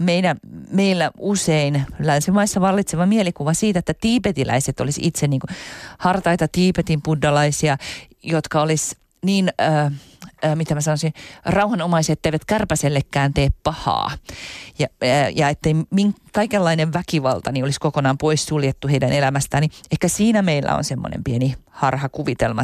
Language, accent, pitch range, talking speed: Finnish, native, 140-165 Hz, 120 wpm